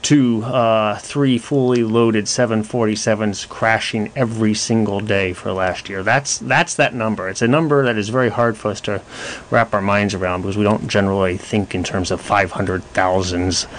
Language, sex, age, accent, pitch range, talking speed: English, male, 30-49, American, 110-145 Hz, 185 wpm